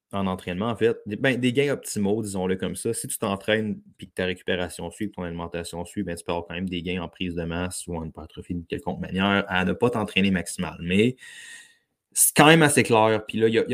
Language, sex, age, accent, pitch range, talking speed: French, male, 20-39, Canadian, 90-105 Hz, 250 wpm